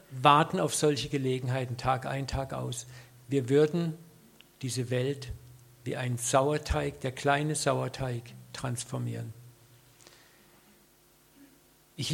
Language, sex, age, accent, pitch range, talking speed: German, male, 50-69, German, 125-150 Hz, 100 wpm